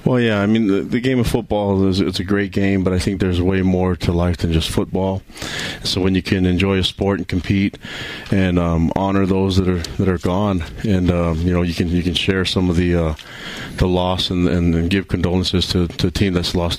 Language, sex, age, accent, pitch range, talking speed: English, male, 30-49, American, 85-95 Hz, 245 wpm